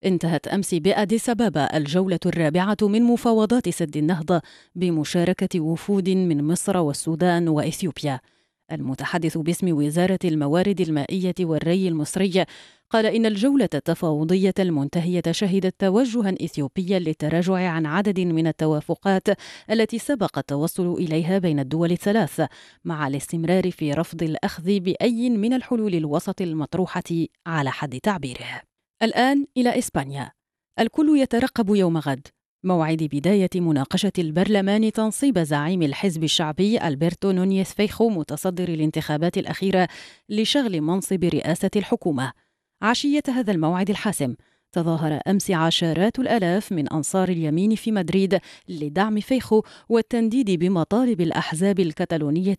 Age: 30-49